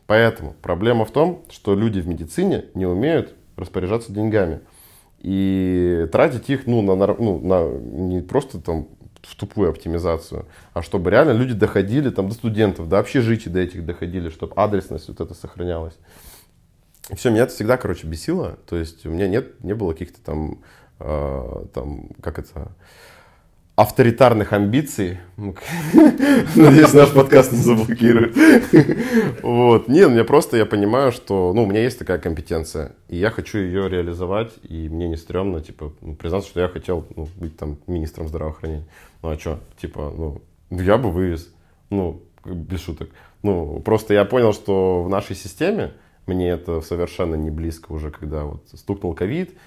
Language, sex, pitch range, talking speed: Russian, male, 80-105 Hz, 155 wpm